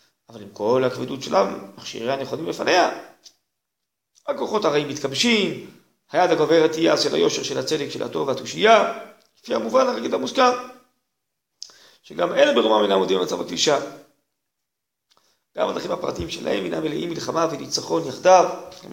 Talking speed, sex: 135 wpm, male